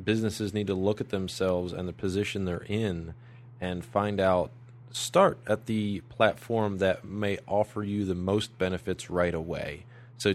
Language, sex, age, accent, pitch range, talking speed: English, male, 30-49, American, 95-120 Hz, 160 wpm